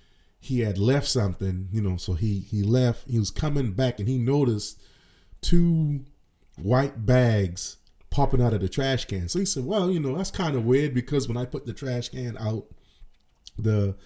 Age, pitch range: 30-49, 95-130 Hz